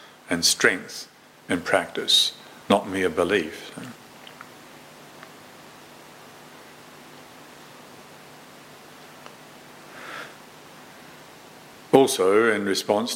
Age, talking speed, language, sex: 60-79, 45 wpm, English, male